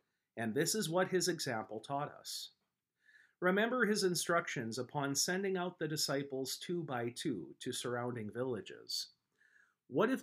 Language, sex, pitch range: English, male, 120-170 Hz